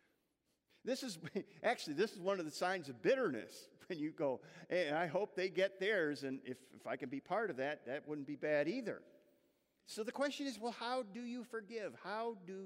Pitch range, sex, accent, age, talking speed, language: 125-165 Hz, male, American, 50-69, 215 wpm, English